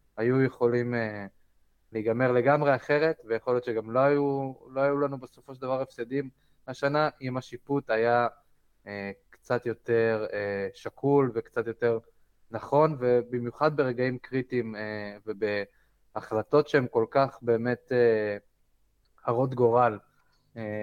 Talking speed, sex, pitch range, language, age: 125 wpm, male, 110-130 Hz, Hebrew, 20-39